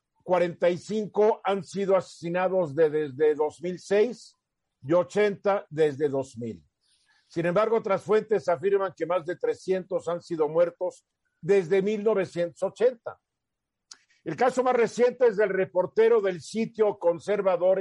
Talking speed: 120 wpm